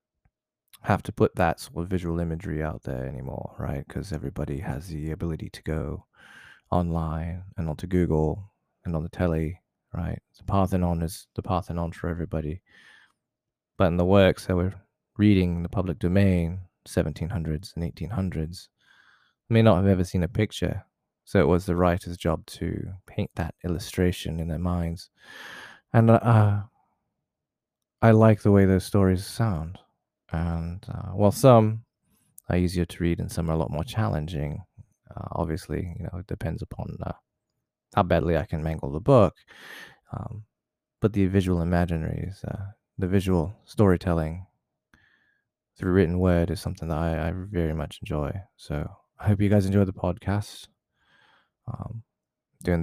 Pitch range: 85-100 Hz